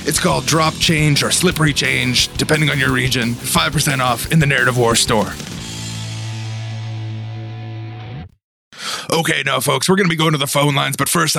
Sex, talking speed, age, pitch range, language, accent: male, 170 wpm, 30-49, 120-150 Hz, English, American